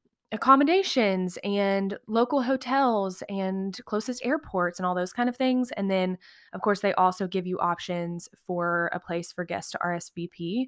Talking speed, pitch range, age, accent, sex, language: 165 wpm, 185-230 Hz, 20-39, American, female, English